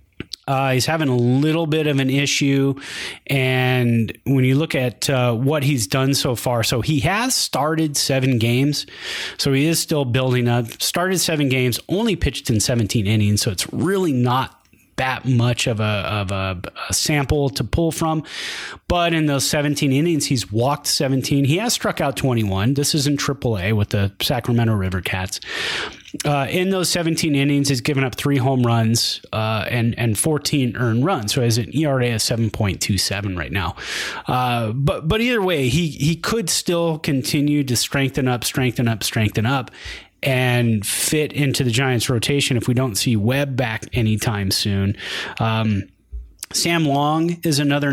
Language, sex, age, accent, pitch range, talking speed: English, male, 30-49, American, 115-145 Hz, 175 wpm